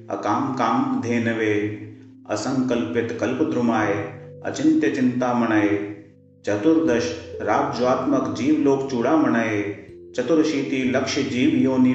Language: Hindi